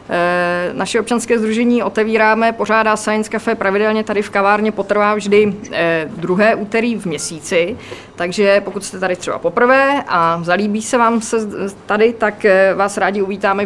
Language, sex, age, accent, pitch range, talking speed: Czech, female, 20-39, native, 190-220 Hz, 145 wpm